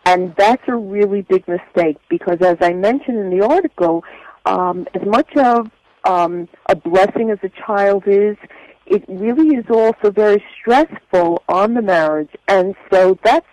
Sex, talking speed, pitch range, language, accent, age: female, 160 wpm, 180-235 Hz, English, American, 50-69